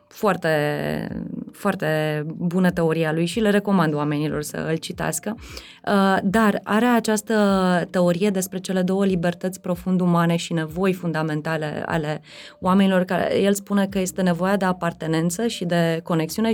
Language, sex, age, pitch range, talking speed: Romanian, female, 20-39, 170-200 Hz, 135 wpm